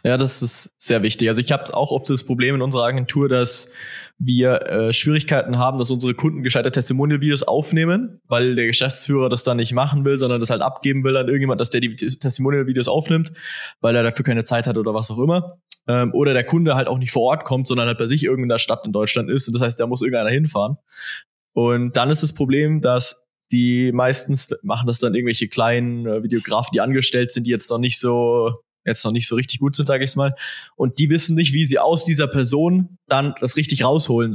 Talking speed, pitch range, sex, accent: 225 wpm, 120-145 Hz, male, German